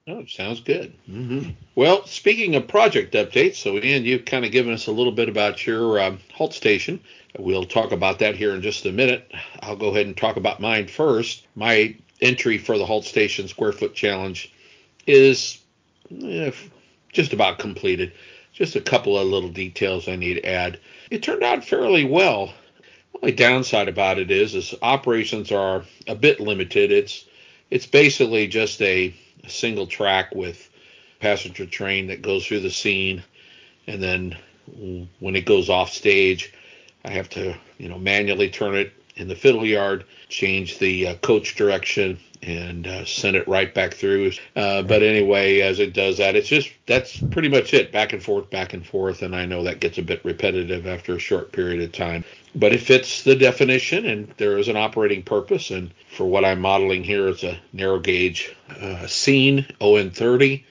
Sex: male